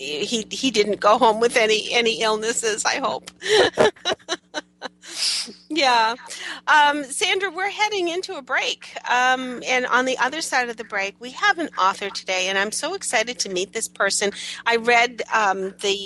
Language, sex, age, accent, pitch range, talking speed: English, female, 40-59, American, 190-235 Hz, 170 wpm